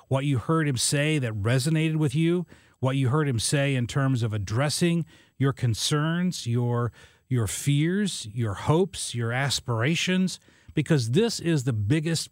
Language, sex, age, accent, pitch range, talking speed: English, male, 40-59, American, 115-160 Hz, 155 wpm